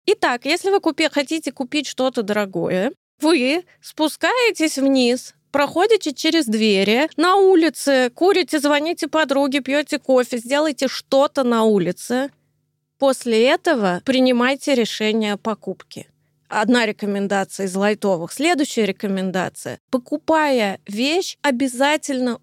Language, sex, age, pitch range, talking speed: Russian, female, 20-39, 215-285 Hz, 105 wpm